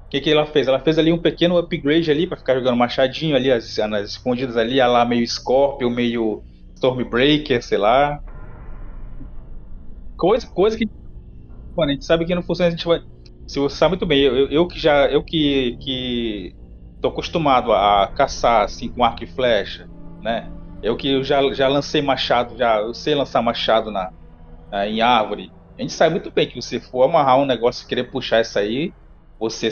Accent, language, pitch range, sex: Brazilian, Portuguese, 105-170 Hz, male